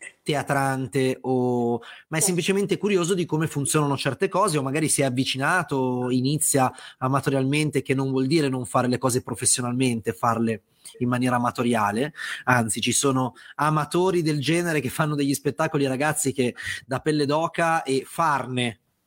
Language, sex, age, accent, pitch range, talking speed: Italian, male, 30-49, native, 125-165 Hz, 150 wpm